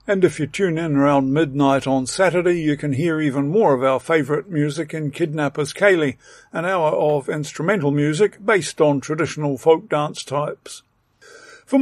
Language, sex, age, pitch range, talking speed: English, male, 50-69, 145-190 Hz, 170 wpm